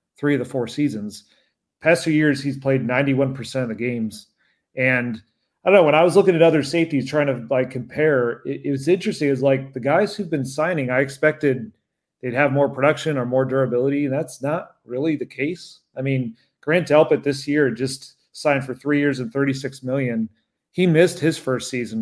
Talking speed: 205 wpm